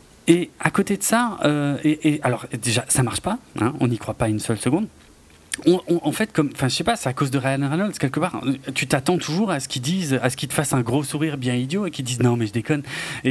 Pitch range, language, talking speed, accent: 135-195 Hz, French, 290 wpm, French